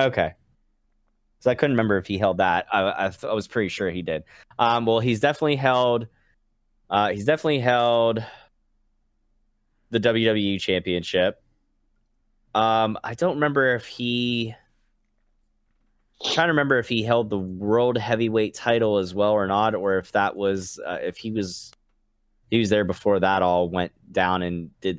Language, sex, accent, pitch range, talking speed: English, male, American, 95-115 Hz, 160 wpm